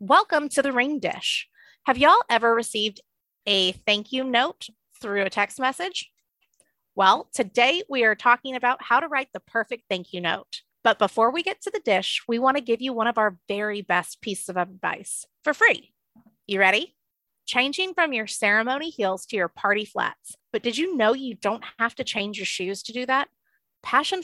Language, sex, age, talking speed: English, female, 30-49, 195 wpm